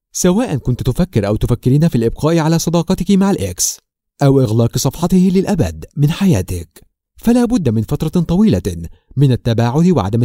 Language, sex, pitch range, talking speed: Arabic, male, 115-185 Hz, 145 wpm